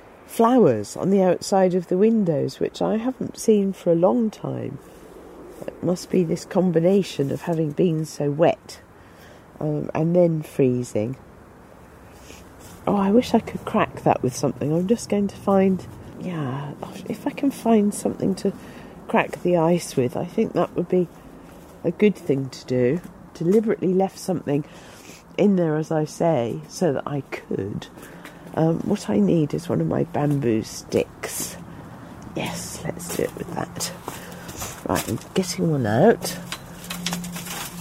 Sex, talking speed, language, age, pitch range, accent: female, 150 wpm, English, 50-69, 150-200 Hz, British